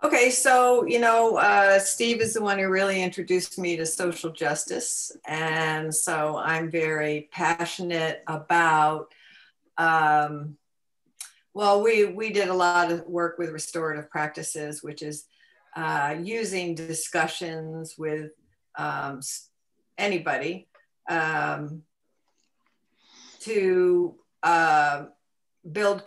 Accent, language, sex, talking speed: American, English, female, 105 wpm